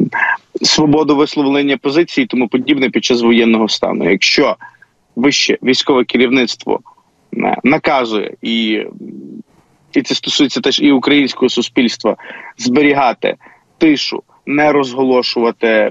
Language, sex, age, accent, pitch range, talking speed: Ukrainian, male, 20-39, native, 115-145 Hz, 100 wpm